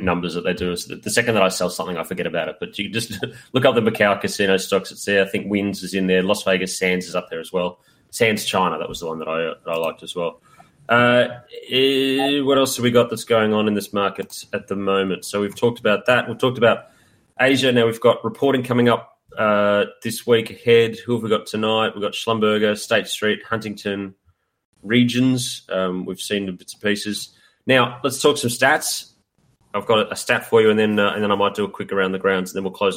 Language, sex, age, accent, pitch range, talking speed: English, male, 30-49, Australian, 95-120 Hz, 250 wpm